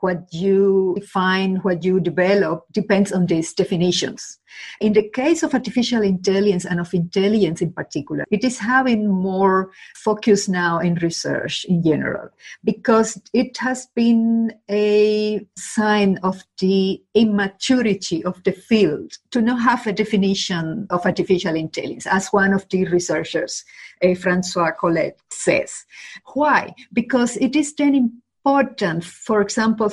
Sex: female